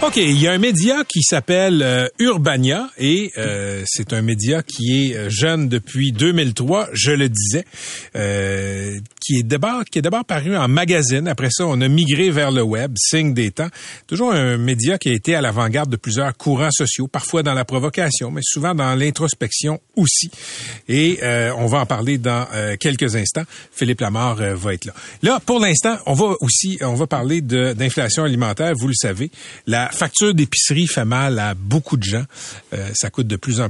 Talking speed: 200 wpm